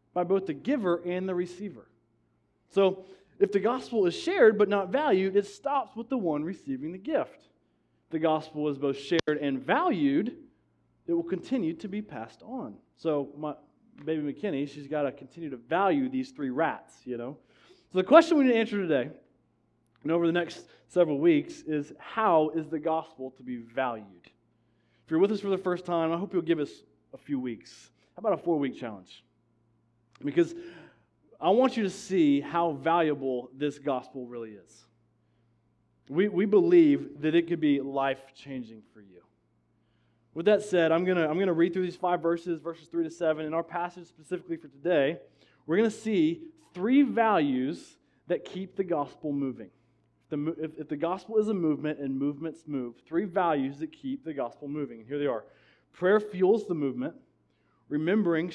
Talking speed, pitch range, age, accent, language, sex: 180 wpm, 140-200 Hz, 20-39, American, English, male